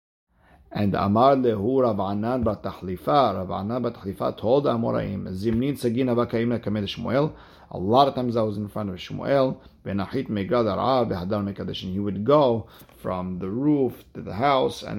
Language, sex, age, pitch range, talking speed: English, male, 50-69, 100-120 Hz, 130 wpm